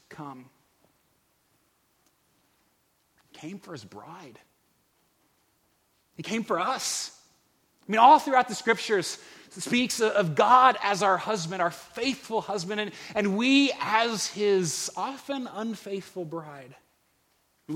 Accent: American